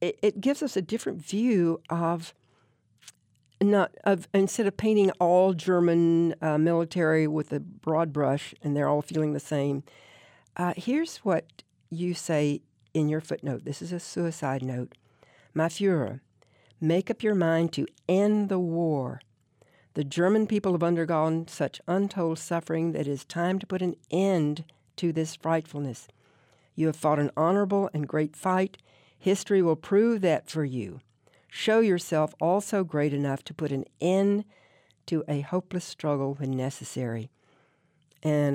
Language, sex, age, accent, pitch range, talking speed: English, female, 60-79, American, 140-180 Hz, 155 wpm